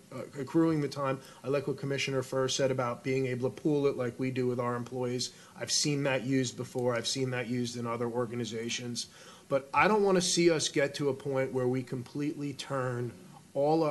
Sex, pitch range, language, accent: male, 130-160 Hz, English, American